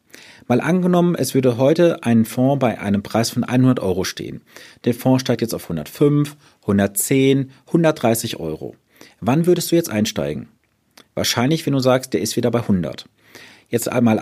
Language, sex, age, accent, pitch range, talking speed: German, male, 40-59, German, 110-150 Hz, 165 wpm